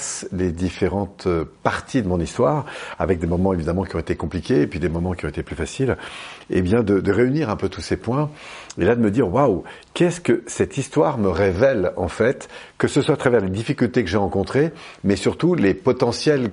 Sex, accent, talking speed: male, French, 220 wpm